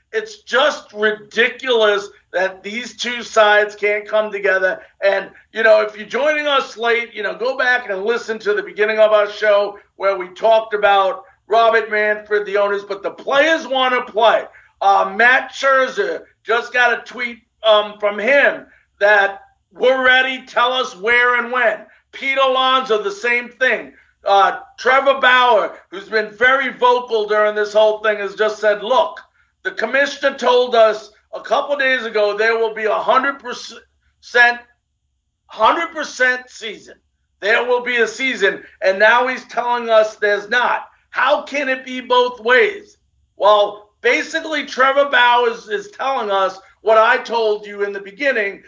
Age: 50-69